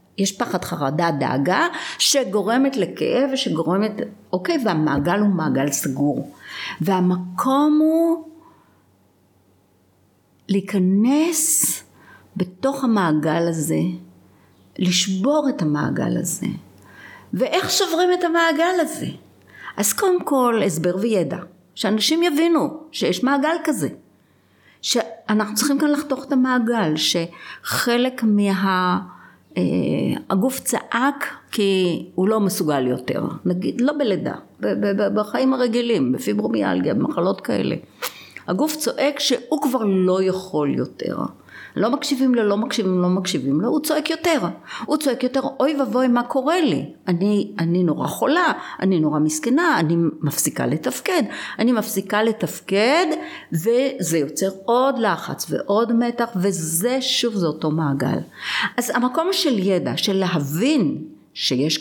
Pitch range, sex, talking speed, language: 170-270 Hz, female, 115 wpm, Hebrew